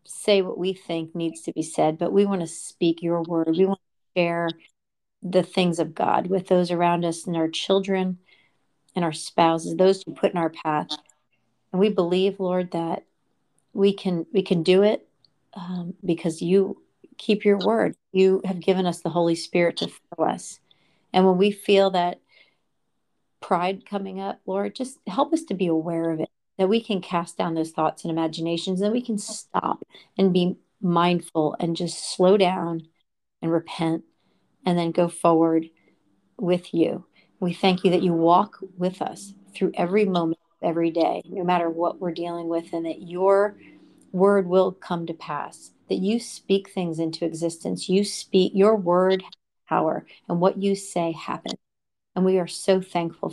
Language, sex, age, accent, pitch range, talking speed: English, female, 40-59, American, 170-195 Hz, 180 wpm